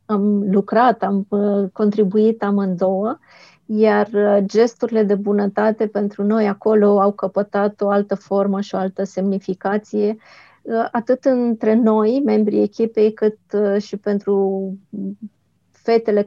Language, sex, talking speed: Romanian, female, 110 wpm